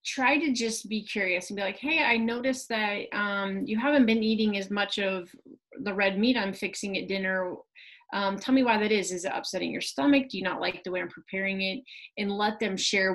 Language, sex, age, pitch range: English, female, 30-49, 190-225 Hz